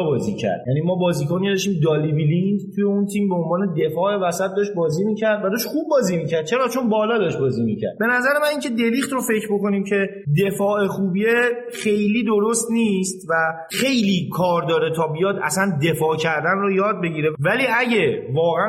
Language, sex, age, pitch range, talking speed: Persian, male, 30-49, 140-200 Hz, 185 wpm